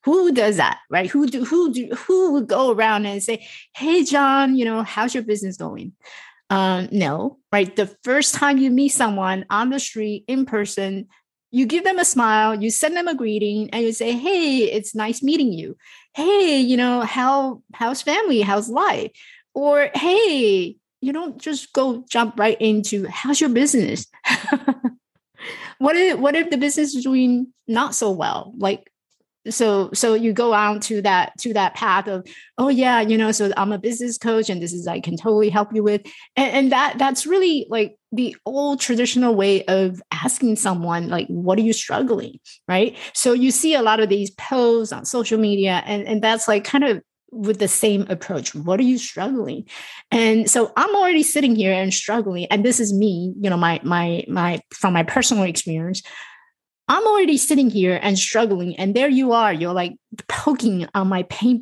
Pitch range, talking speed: 205-270 Hz, 190 wpm